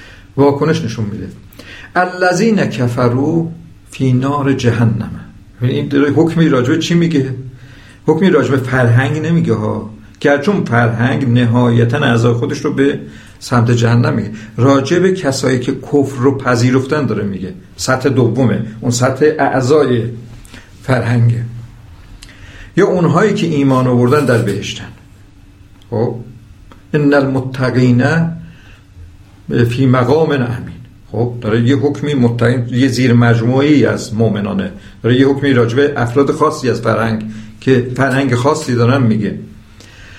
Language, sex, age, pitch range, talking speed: Persian, male, 50-69, 110-145 Hz, 115 wpm